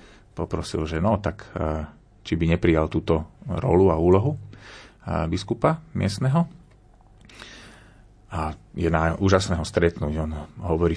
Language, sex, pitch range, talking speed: Slovak, male, 80-105 Hz, 110 wpm